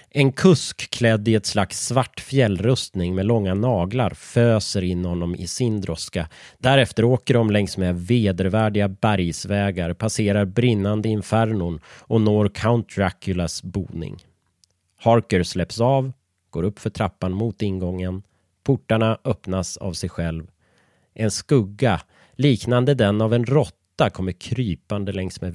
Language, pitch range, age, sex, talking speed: Swedish, 90-115 Hz, 30-49, male, 135 wpm